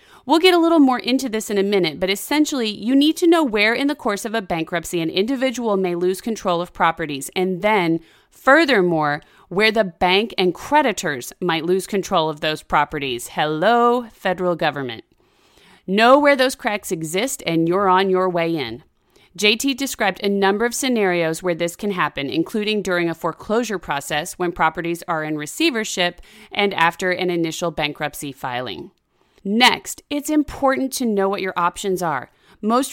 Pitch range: 175-245 Hz